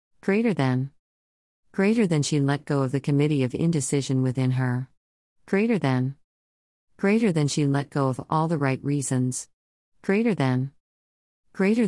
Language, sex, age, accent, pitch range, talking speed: English, female, 40-59, American, 125-155 Hz, 145 wpm